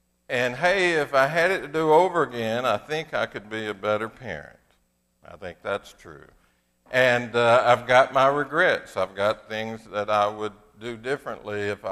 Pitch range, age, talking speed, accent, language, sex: 100-125 Hz, 60-79, 185 wpm, American, English, male